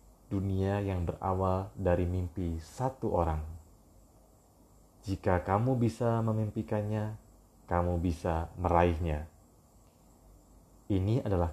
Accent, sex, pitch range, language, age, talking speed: native, male, 85-105 Hz, Indonesian, 30-49, 85 wpm